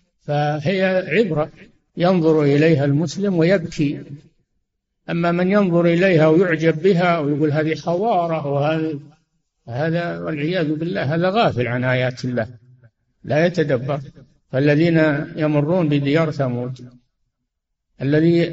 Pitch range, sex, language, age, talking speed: 140-170 Hz, male, Arabic, 60-79, 100 wpm